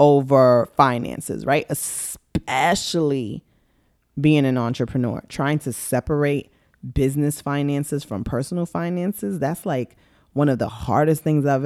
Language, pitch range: English, 130-195 Hz